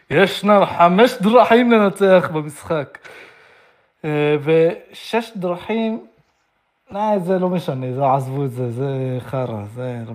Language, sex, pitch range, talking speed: Hebrew, male, 120-170 Hz, 105 wpm